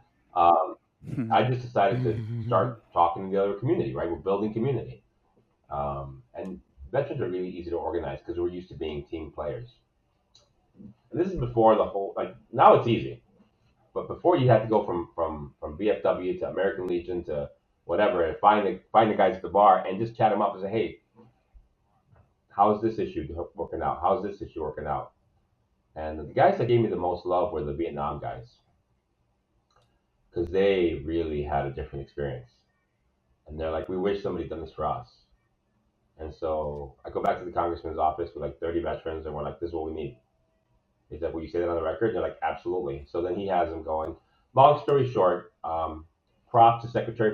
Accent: American